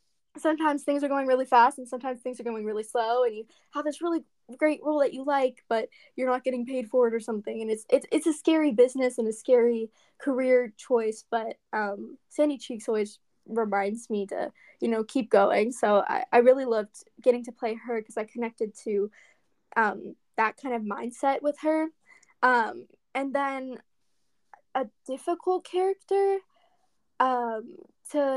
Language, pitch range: English, 235-305 Hz